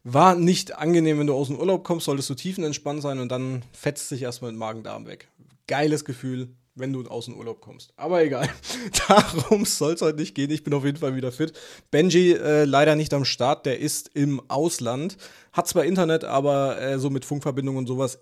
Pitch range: 125-155 Hz